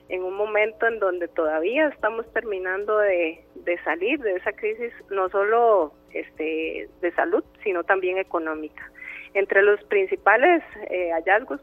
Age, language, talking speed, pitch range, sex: 30-49, Spanish, 140 wpm, 170-215 Hz, female